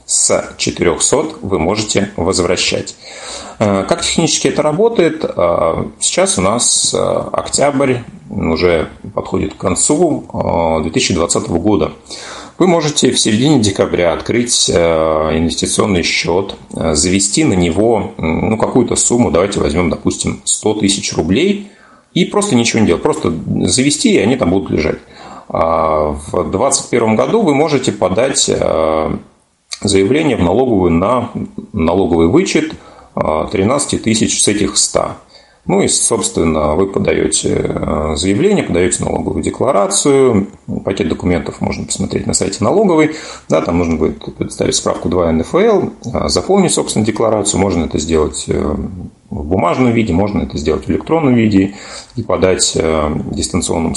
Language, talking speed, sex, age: Russian, 120 wpm, male, 30-49